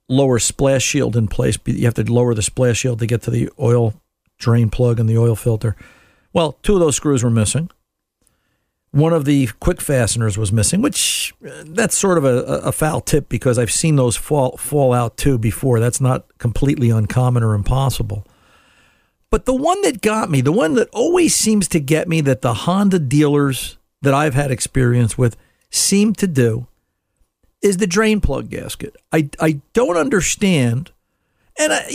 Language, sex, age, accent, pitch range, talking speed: English, male, 50-69, American, 125-170 Hz, 185 wpm